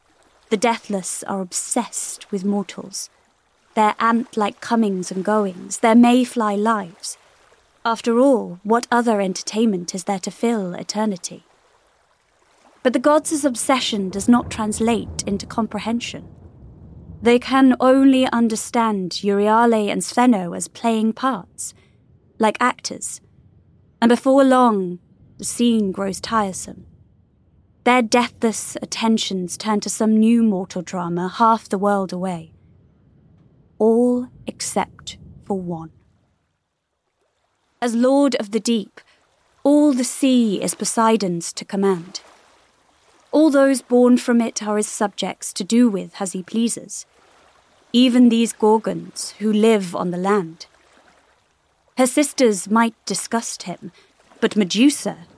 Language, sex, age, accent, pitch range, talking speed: English, female, 20-39, British, 195-240 Hz, 120 wpm